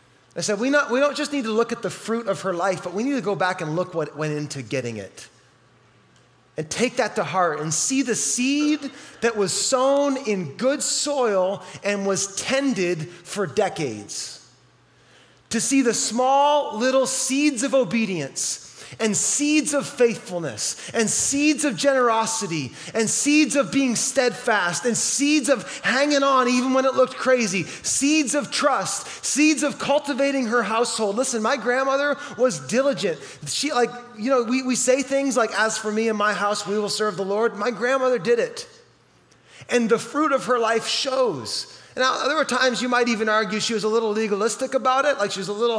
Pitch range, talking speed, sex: 200-260 Hz, 185 wpm, male